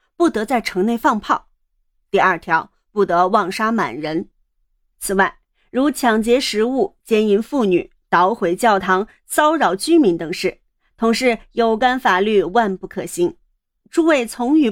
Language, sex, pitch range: Chinese, female, 190-265 Hz